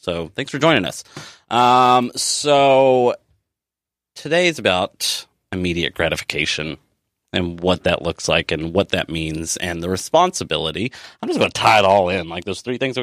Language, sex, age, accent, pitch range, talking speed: English, male, 30-49, American, 90-125 Hz, 170 wpm